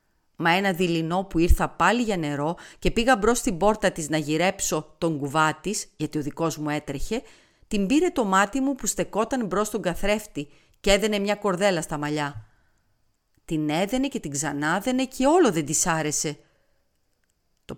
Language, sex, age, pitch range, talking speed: Greek, female, 40-59, 150-205 Hz, 170 wpm